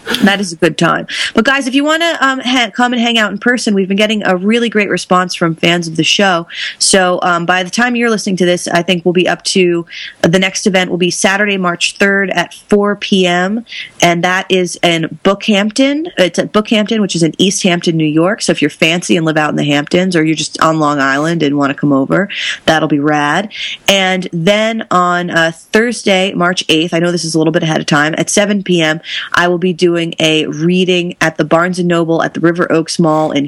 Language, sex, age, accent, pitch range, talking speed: English, female, 30-49, American, 165-200 Hz, 230 wpm